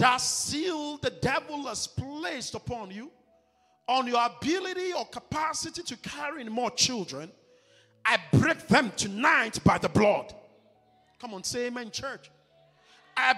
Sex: male